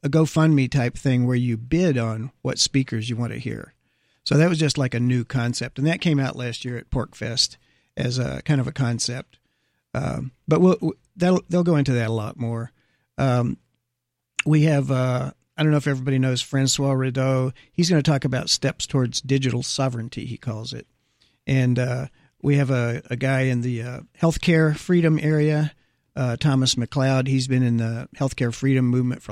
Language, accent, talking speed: English, American, 195 wpm